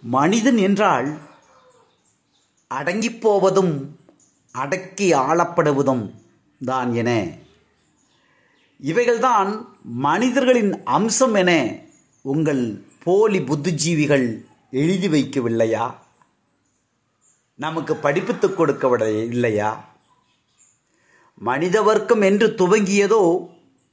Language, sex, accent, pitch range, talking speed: Tamil, male, native, 155-225 Hz, 60 wpm